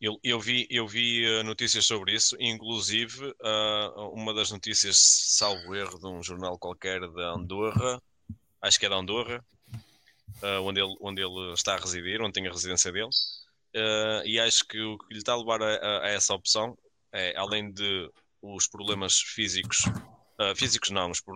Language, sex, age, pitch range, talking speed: Portuguese, male, 20-39, 95-110 Hz, 175 wpm